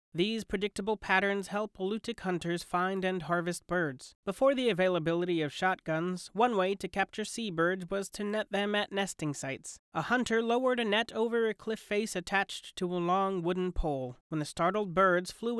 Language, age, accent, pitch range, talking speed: English, 30-49, American, 170-210 Hz, 180 wpm